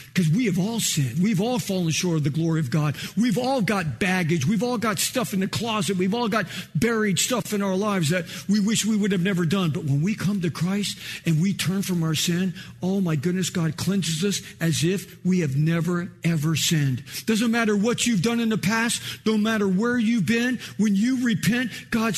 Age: 50-69